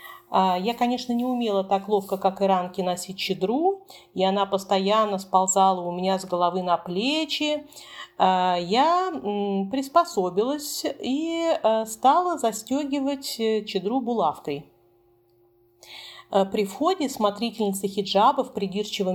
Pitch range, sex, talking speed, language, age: 190-250 Hz, female, 105 wpm, Russian, 40-59